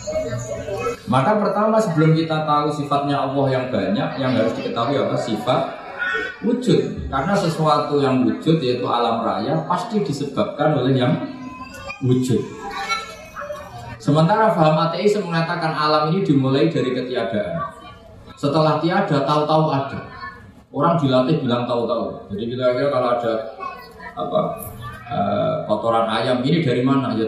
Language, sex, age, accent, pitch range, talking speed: Indonesian, male, 20-39, native, 125-170 Hz, 120 wpm